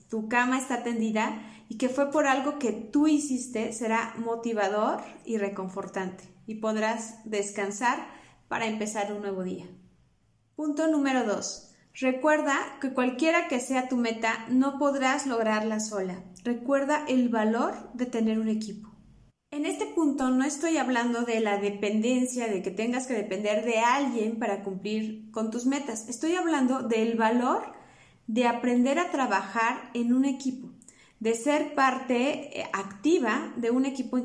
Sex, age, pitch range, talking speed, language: female, 30-49, 215-270 Hz, 150 wpm, English